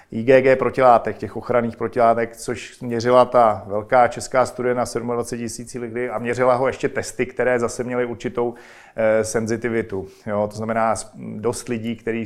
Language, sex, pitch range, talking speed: Czech, male, 110-130 Hz, 150 wpm